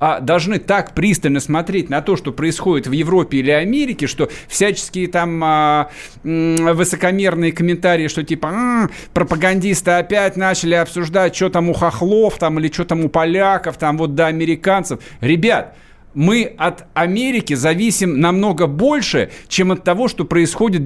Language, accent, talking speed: Russian, native, 140 wpm